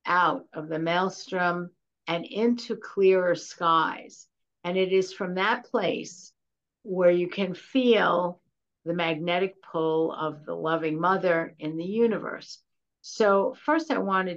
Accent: American